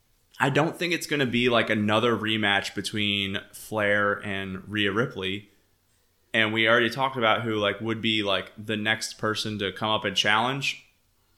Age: 20-39